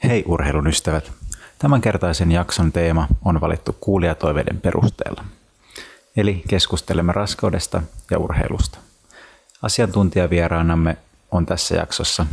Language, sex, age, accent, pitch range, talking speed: Finnish, male, 30-49, native, 85-100 Hz, 95 wpm